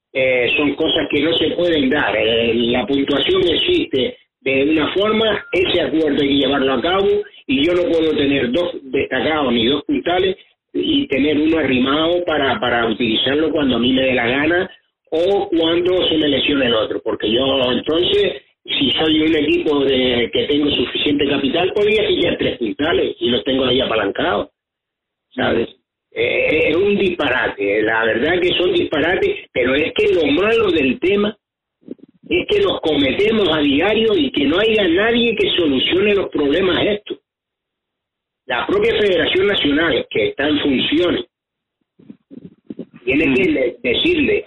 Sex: male